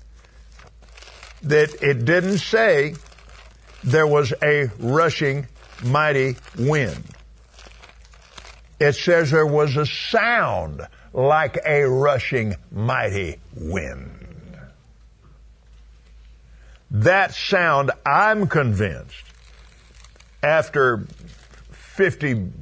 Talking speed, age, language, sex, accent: 70 wpm, 50-69, English, male, American